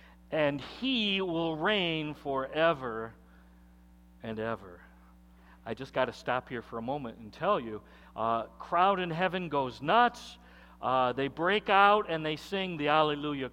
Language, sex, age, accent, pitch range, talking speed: English, male, 50-69, American, 125-210 Hz, 150 wpm